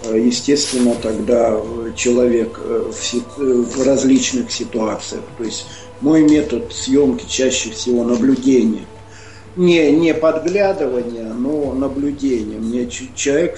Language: Russian